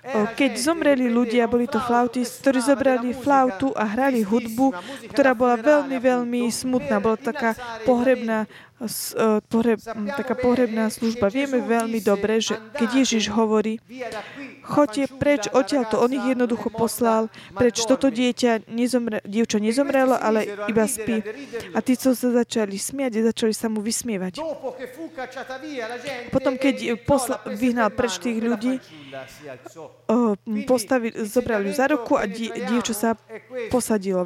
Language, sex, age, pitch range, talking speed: Slovak, female, 20-39, 220-260 Hz, 125 wpm